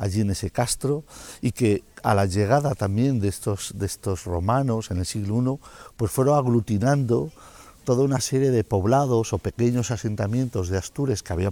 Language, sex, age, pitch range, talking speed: Spanish, male, 50-69, 100-125 Hz, 175 wpm